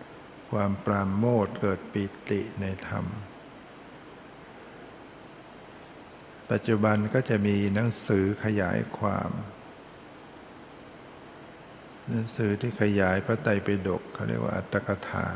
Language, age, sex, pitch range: Thai, 60-79, male, 100-110 Hz